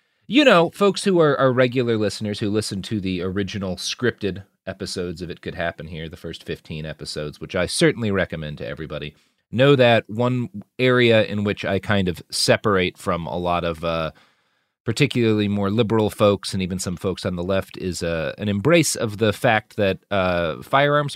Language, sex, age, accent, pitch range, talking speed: English, male, 40-59, American, 85-120 Hz, 185 wpm